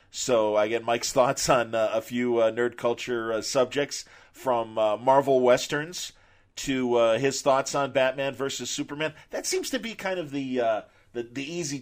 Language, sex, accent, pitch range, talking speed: English, male, American, 110-140 Hz, 190 wpm